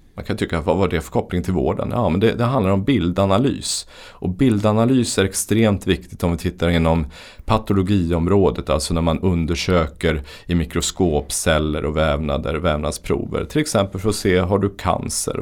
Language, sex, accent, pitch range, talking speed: Swedish, male, native, 85-100 Hz, 180 wpm